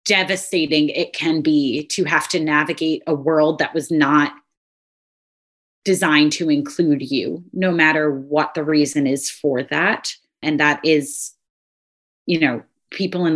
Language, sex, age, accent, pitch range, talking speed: English, female, 30-49, American, 150-180 Hz, 145 wpm